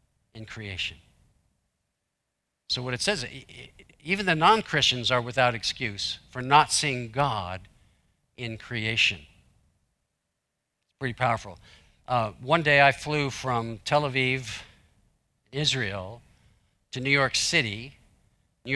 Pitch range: 105-130 Hz